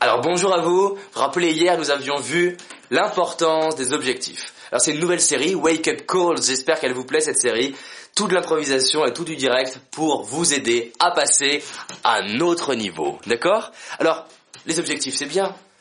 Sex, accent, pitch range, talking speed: male, French, 135-185 Hz, 180 wpm